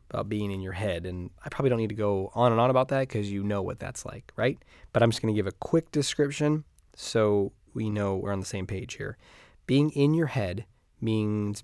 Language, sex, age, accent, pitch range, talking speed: English, male, 20-39, American, 100-125 Hz, 240 wpm